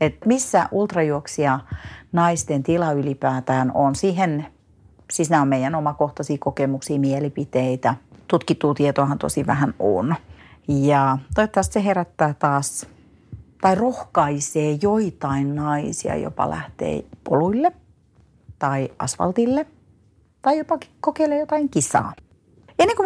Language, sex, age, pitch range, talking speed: Finnish, female, 40-59, 135-170 Hz, 105 wpm